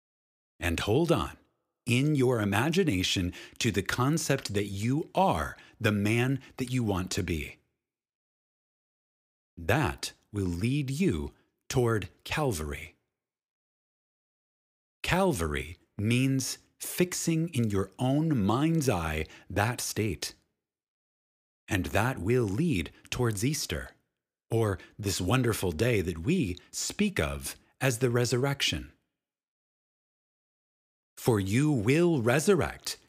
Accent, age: American, 30-49